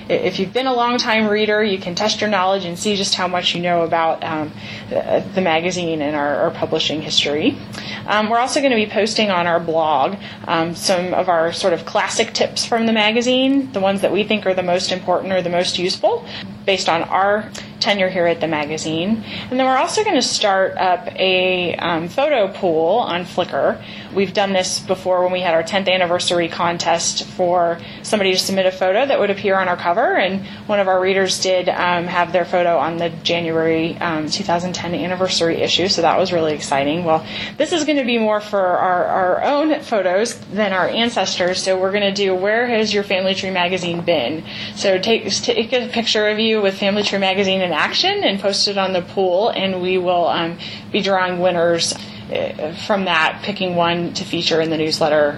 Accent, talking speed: American, 205 wpm